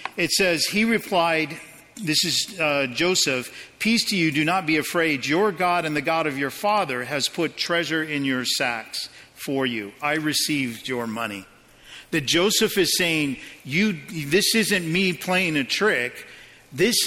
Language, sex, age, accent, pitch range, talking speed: English, male, 50-69, American, 140-180 Hz, 160 wpm